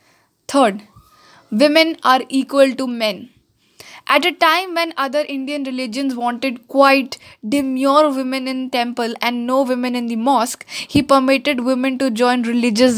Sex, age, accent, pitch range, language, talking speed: female, 10-29, Indian, 230-275 Hz, English, 145 wpm